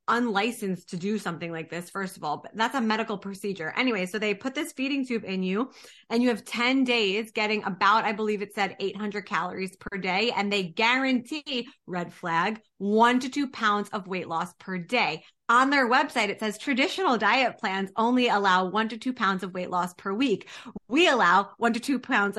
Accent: American